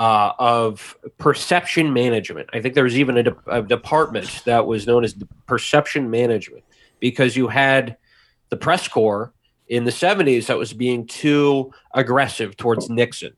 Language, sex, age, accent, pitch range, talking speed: English, male, 20-39, American, 115-135 Hz, 150 wpm